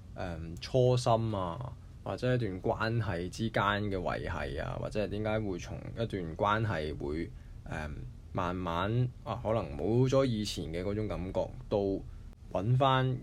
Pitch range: 90-115 Hz